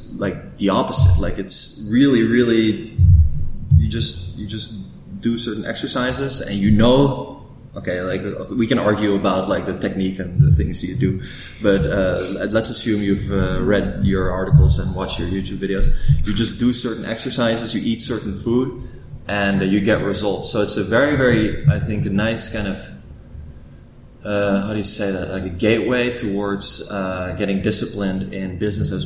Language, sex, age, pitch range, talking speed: English, male, 20-39, 95-110 Hz, 175 wpm